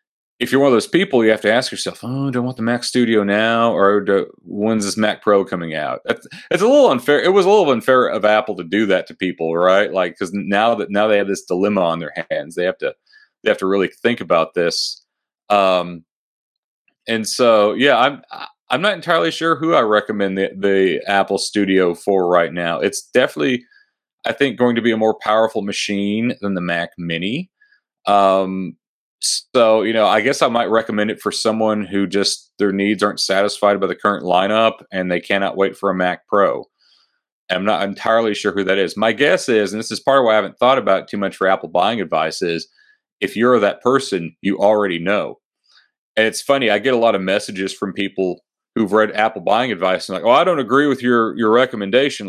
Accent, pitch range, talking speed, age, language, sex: American, 100-125 Hz, 220 wpm, 40-59, English, male